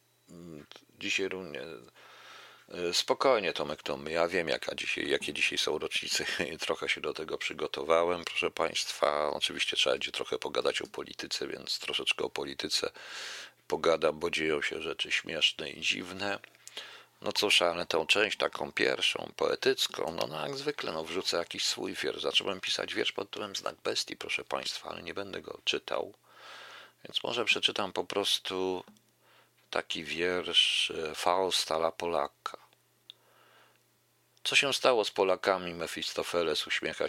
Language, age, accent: Polish, 40-59, native